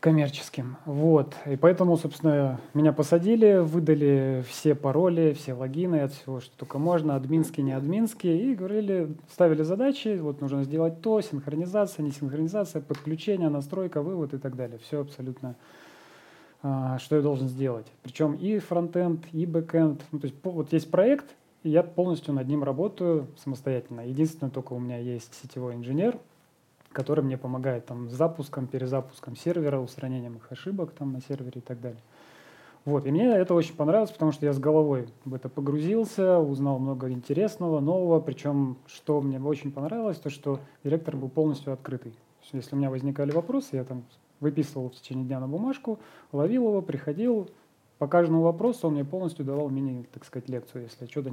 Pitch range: 135-165 Hz